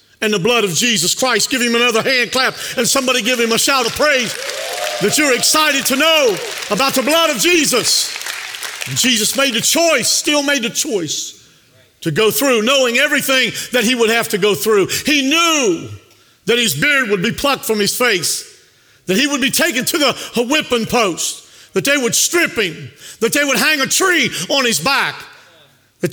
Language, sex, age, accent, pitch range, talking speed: English, male, 50-69, American, 230-295 Hz, 195 wpm